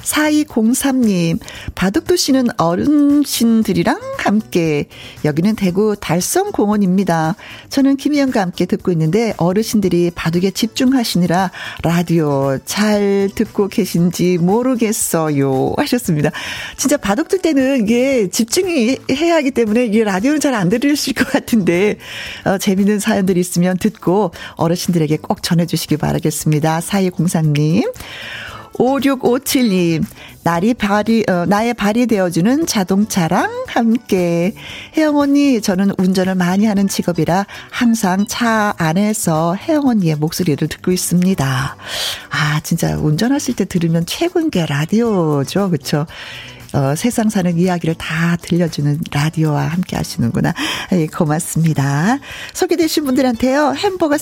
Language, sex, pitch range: Korean, female, 170-245 Hz